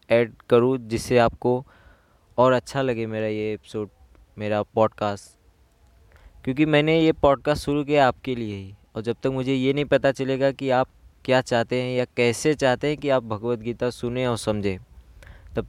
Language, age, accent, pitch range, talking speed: Hindi, 20-39, native, 110-130 Hz, 175 wpm